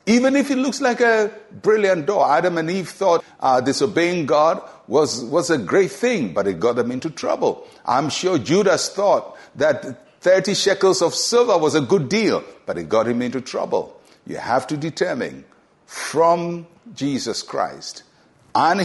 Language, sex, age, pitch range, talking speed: English, male, 60-79, 120-190 Hz, 170 wpm